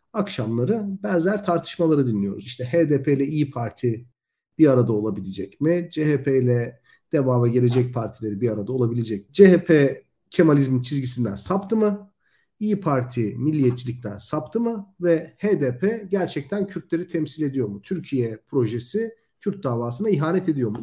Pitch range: 125-195 Hz